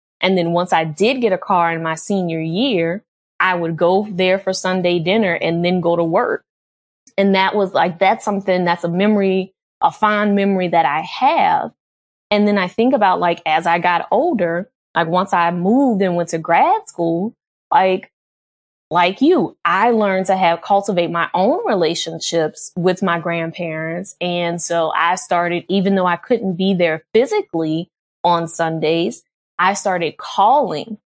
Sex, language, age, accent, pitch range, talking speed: female, English, 20-39, American, 170-205 Hz, 170 wpm